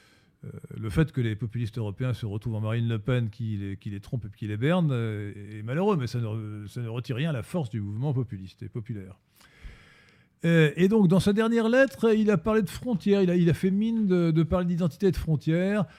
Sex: male